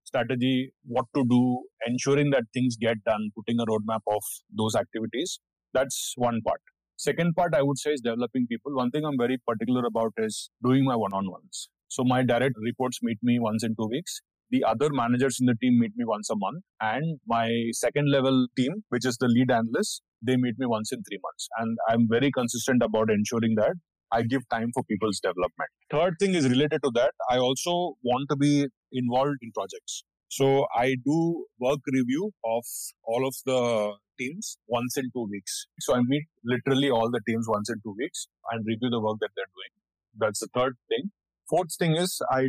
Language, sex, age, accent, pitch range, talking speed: English, male, 30-49, Indian, 115-135 Hz, 200 wpm